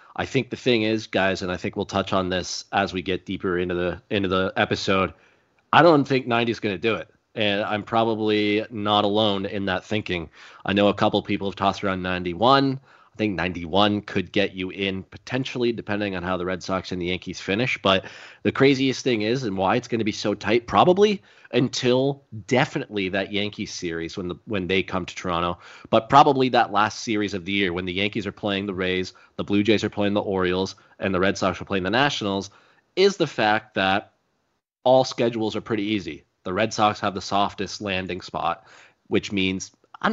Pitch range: 95-120 Hz